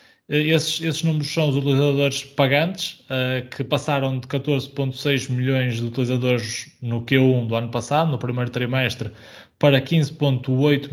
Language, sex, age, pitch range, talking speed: Portuguese, male, 20-39, 120-140 Hz, 130 wpm